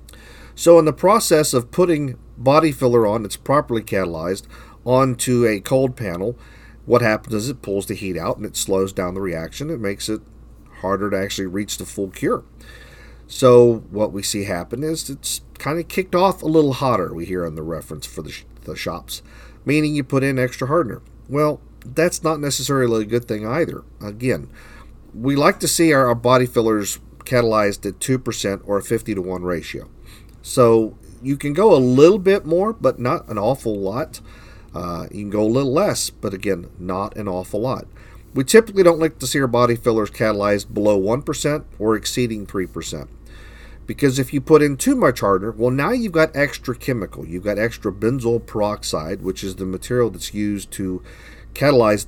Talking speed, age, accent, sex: 190 wpm, 50-69, American, male